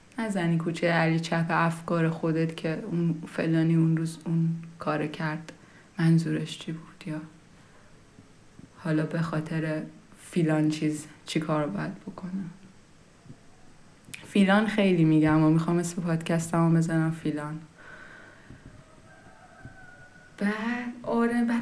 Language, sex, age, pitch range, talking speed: Persian, female, 20-39, 160-205 Hz, 105 wpm